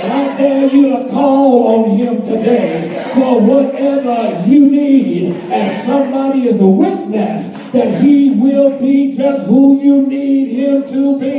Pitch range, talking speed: 240-280 Hz, 150 wpm